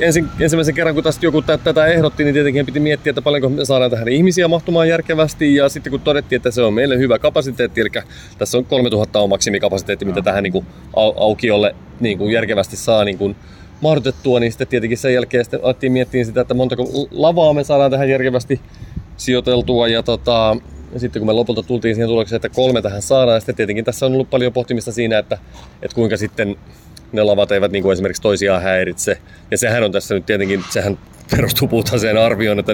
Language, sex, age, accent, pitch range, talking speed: Finnish, male, 30-49, native, 100-130 Hz, 200 wpm